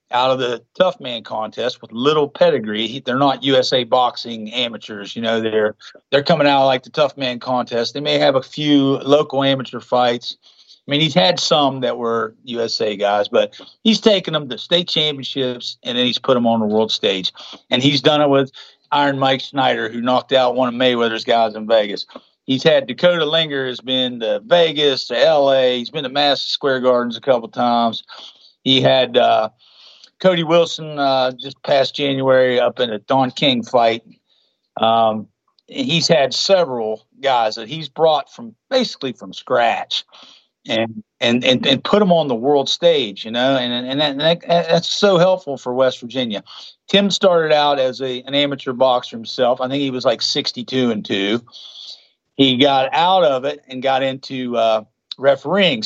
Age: 50-69